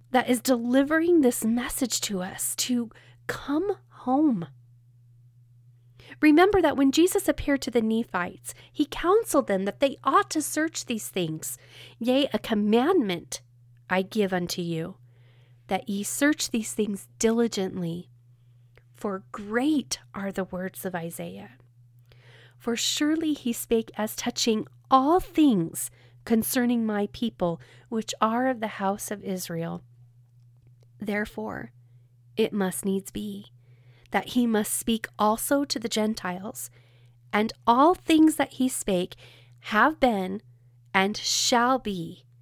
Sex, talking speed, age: female, 125 wpm, 40-59